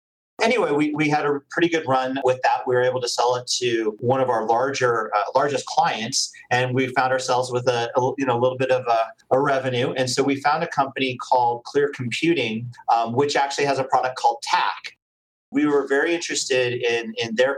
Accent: American